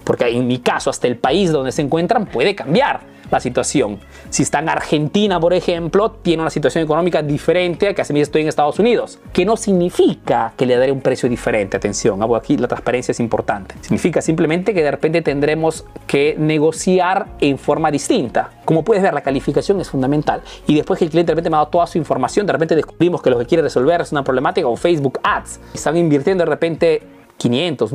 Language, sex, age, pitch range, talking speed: Spanish, male, 30-49, 145-185 Hz, 215 wpm